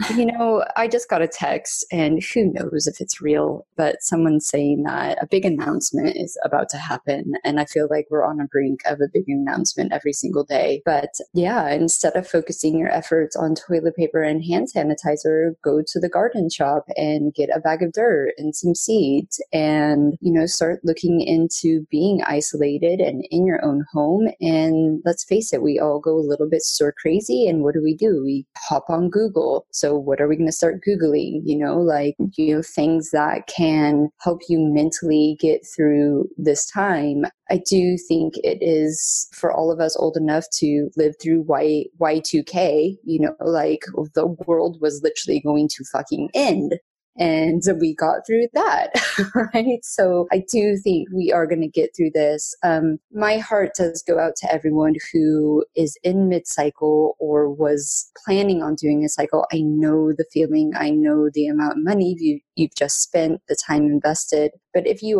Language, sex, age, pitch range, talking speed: English, female, 20-39, 150-175 Hz, 190 wpm